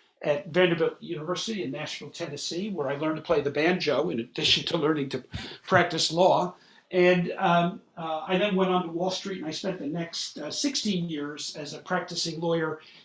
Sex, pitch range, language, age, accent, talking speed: male, 155-185 Hz, English, 50-69, American, 195 wpm